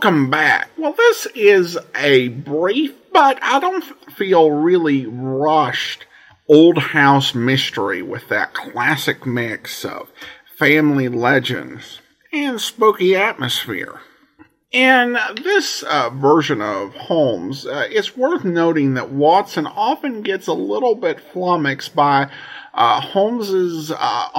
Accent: American